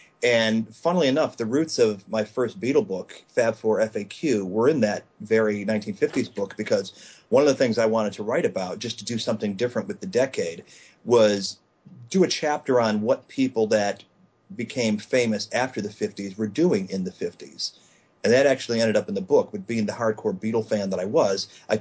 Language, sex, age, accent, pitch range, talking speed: English, male, 40-59, American, 100-115 Hz, 200 wpm